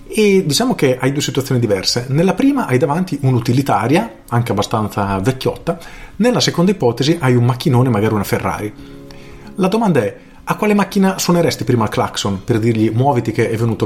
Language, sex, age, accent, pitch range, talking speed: Italian, male, 40-59, native, 115-155 Hz, 175 wpm